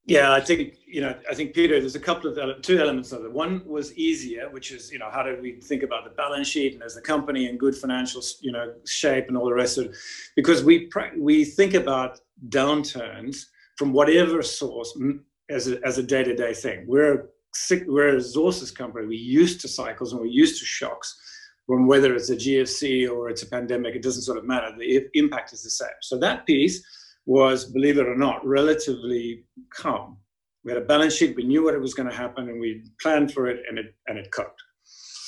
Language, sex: English, male